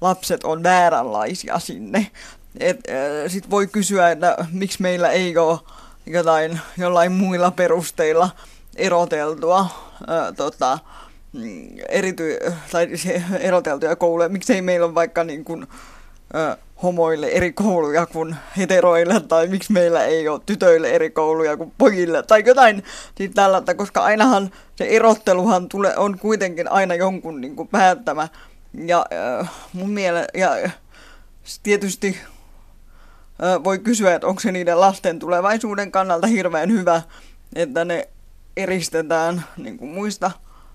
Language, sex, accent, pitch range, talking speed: Finnish, female, native, 165-195 Hz, 115 wpm